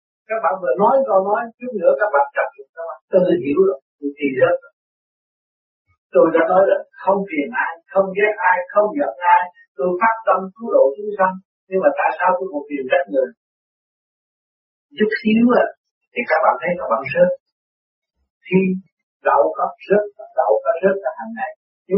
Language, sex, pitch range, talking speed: Vietnamese, male, 175-220 Hz, 195 wpm